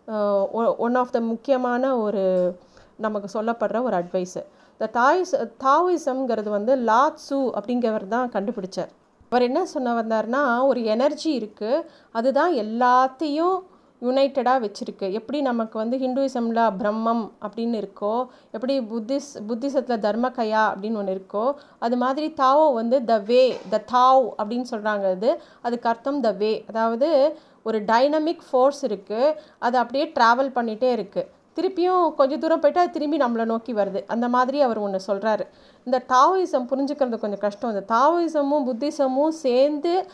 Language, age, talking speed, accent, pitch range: Tamil, 30-49, 135 wpm, native, 220-280 Hz